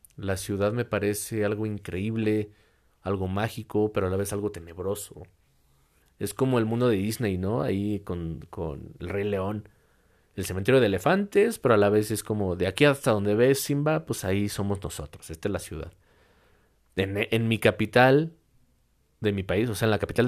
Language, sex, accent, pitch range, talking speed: Spanish, male, Mexican, 95-115 Hz, 185 wpm